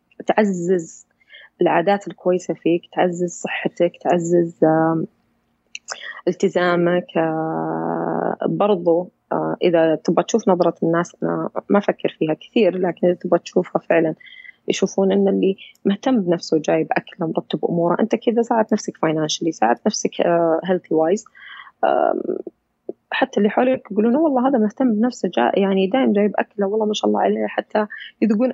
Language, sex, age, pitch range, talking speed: Arabic, female, 20-39, 170-215 Hz, 130 wpm